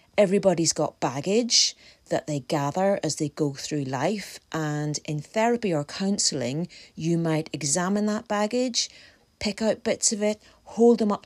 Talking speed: 155 wpm